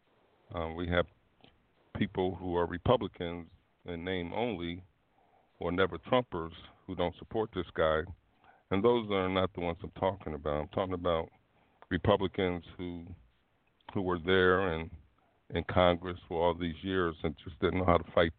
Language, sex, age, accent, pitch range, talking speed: English, male, 50-69, American, 85-95 Hz, 160 wpm